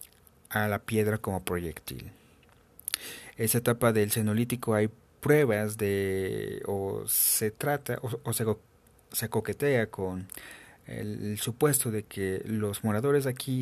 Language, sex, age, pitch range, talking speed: Spanish, male, 40-59, 100-120 Hz, 125 wpm